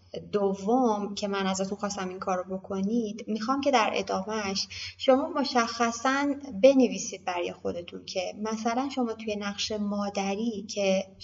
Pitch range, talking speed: 190-220 Hz, 135 wpm